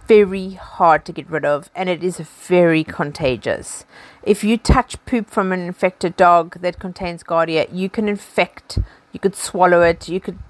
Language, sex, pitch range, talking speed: English, female, 165-200 Hz, 175 wpm